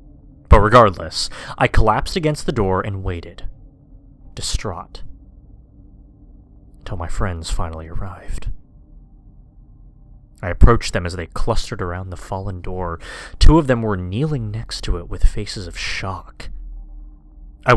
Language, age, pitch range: English, 30-49, 80-115 Hz